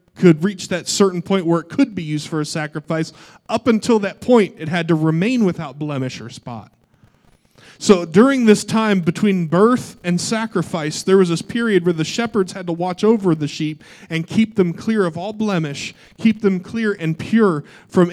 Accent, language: American, English